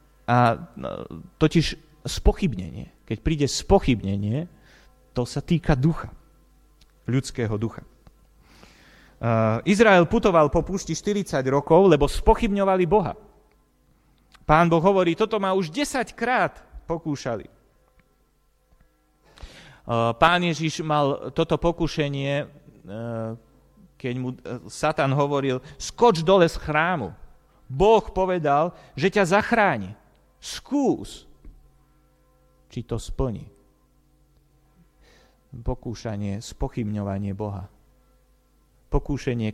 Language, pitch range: Slovak, 110-160 Hz